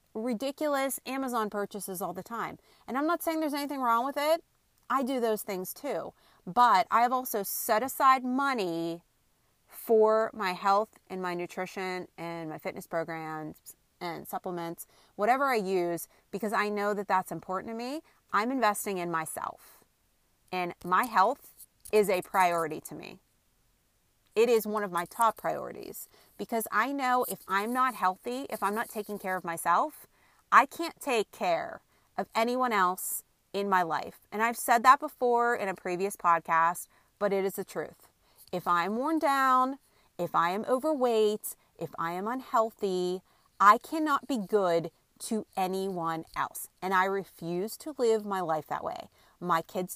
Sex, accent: female, American